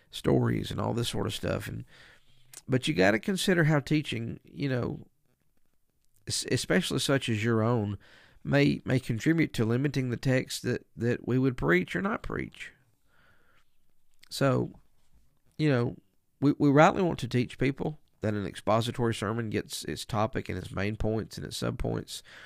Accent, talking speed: American, 165 wpm